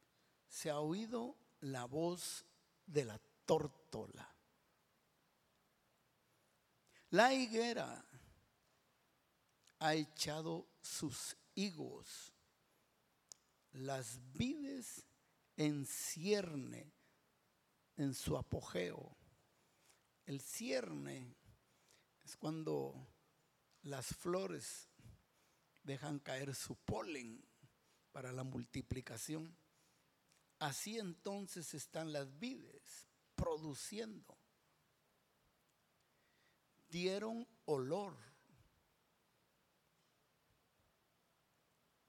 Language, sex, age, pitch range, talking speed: Spanish, male, 60-79, 140-190 Hz, 60 wpm